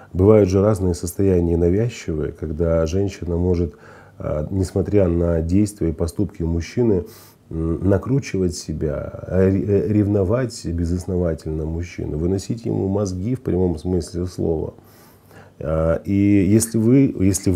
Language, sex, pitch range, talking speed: Russian, male, 85-105 Hz, 95 wpm